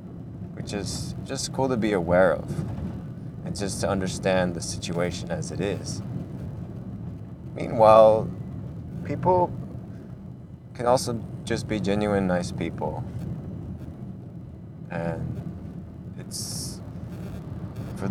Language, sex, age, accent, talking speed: English, male, 20-39, American, 95 wpm